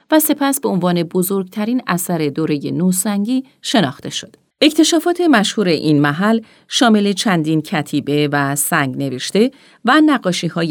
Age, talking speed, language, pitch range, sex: 40-59, 135 wpm, Persian, 150-225 Hz, female